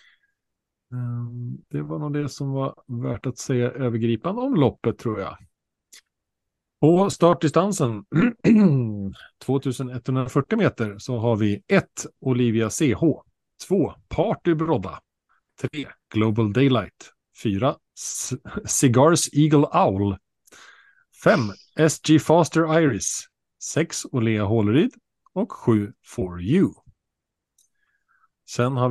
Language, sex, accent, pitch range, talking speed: Swedish, male, Norwegian, 115-160 Hz, 100 wpm